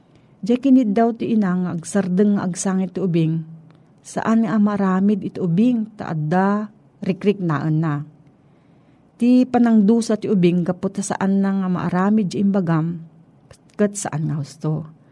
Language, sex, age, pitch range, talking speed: Filipino, female, 40-59, 160-215 Hz, 120 wpm